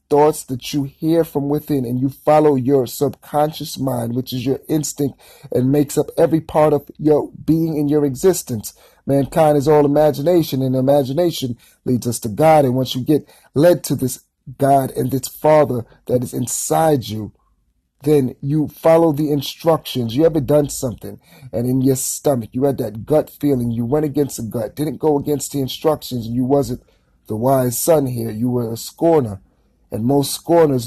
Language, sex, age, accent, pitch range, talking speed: English, male, 40-59, American, 125-150 Hz, 185 wpm